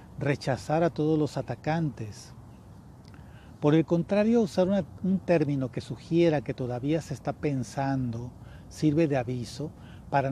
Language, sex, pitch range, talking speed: Spanish, male, 130-170 Hz, 130 wpm